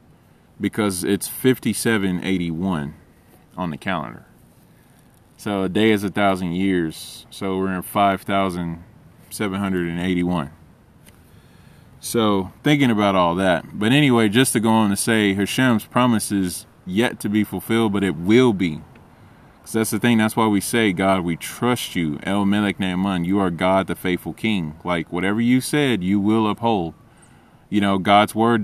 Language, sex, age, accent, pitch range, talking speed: English, male, 20-39, American, 95-115 Hz, 155 wpm